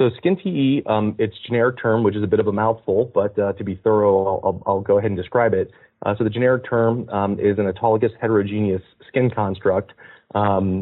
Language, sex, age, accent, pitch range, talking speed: English, male, 30-49, American, 95-105 Hz, 220 wpm